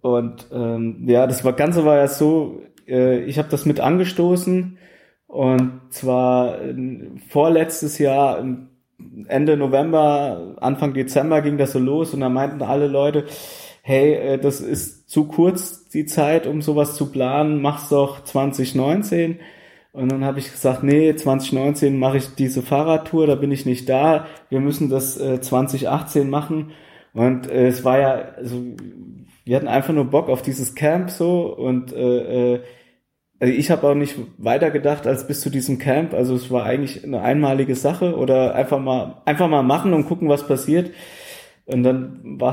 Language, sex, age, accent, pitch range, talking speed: German, male, 20-39, German, 125-150 Hz, 170 wpm